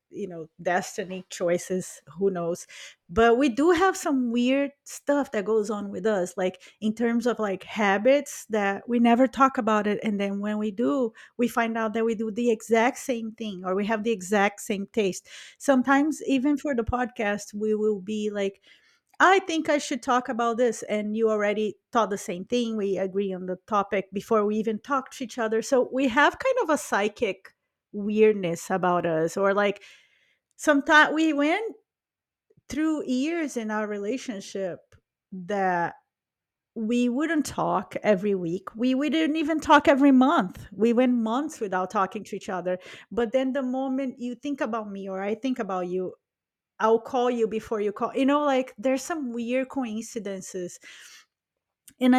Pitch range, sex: 200-265 Hz, female